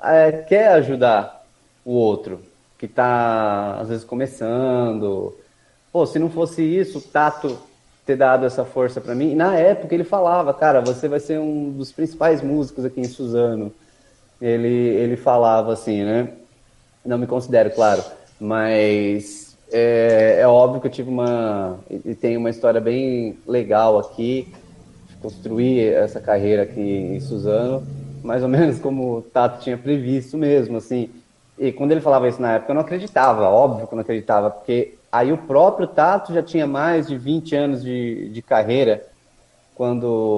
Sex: male